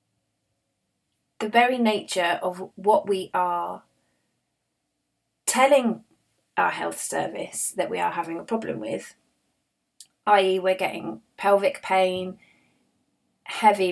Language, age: English, 20-39